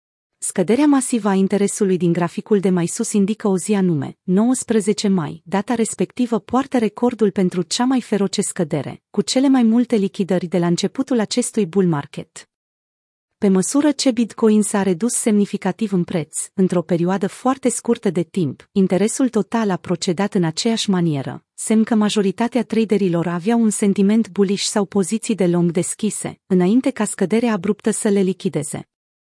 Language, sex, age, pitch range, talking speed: Romanian, female, 30-49, 180-230 Hz, 160 wpm